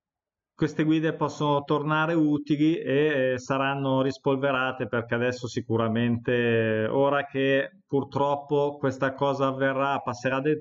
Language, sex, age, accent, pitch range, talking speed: Italian, male, 20-39, native, 125-150 Hz, 105 wpm